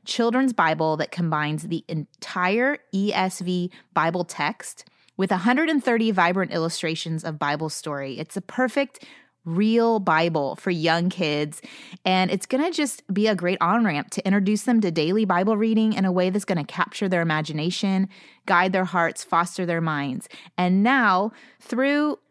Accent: American